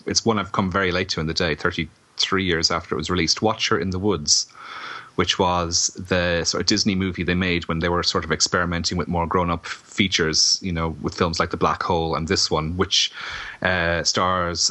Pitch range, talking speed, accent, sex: 85-95 Hz, 215 wpm, Irish, male